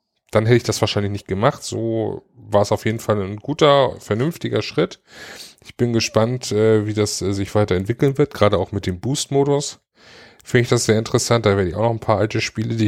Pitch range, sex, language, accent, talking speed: 105-125 Hz, male, German, German, 210 wpm